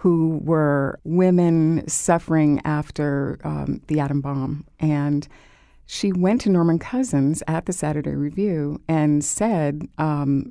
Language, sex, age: English, female, 50-69